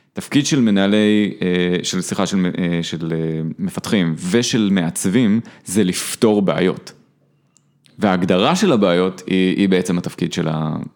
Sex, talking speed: male, 110 wpm